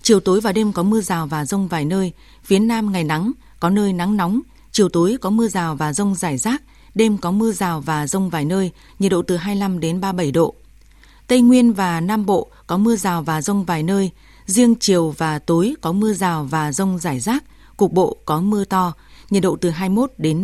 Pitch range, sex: 175-215 Hz, female